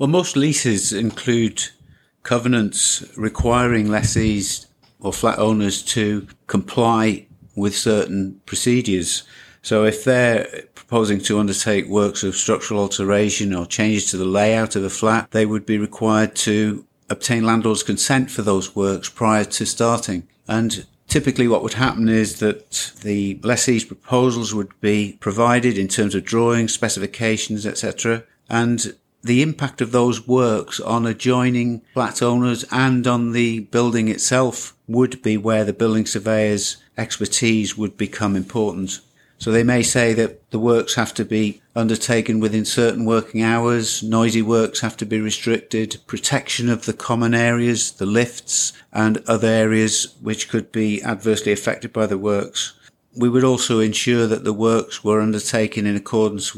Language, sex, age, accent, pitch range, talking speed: English, male, 50-69, British, 105-120 Hz, 150 wpm